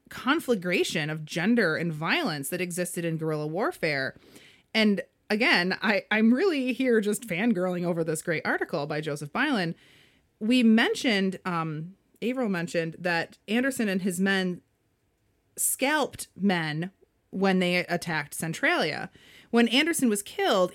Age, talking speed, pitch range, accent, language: 30-49, 130 wpm, 170-230 Hz, American, English